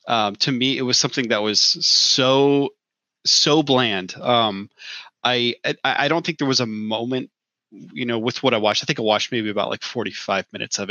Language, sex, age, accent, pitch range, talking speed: English, male, 30-49, American, 110-140 Hz, 205 wpm